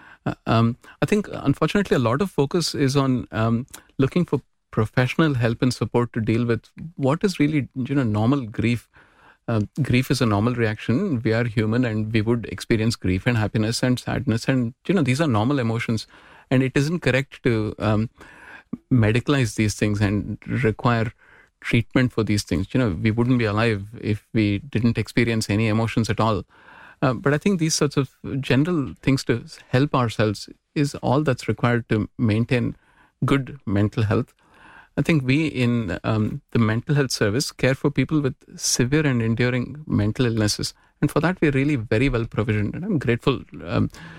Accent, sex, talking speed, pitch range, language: Indian, male, 180 wpm, 110-140 Hz, English